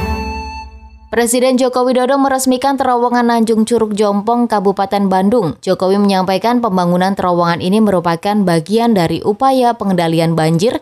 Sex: female